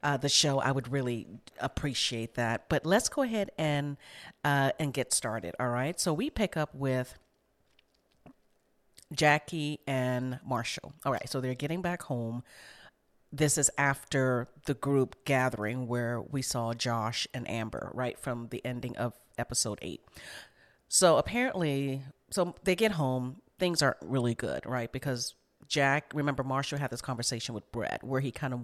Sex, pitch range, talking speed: female, 120-145 Hz, 160 wpm